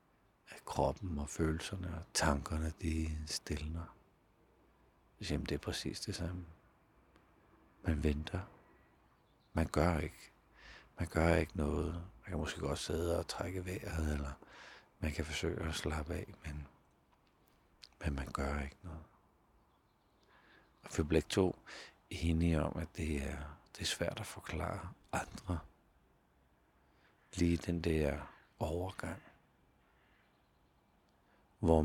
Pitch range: 75-90 Hz